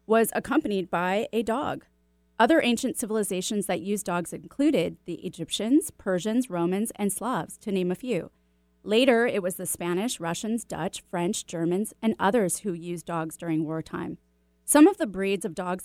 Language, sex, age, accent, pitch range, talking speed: English, female, 30-49, American, 175-235 Hz, 165 wpm